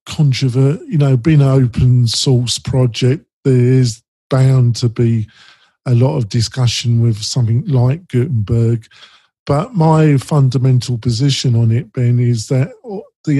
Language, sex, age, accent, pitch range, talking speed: English, male, 50-69, British, 120-135 Hz, 135 wpm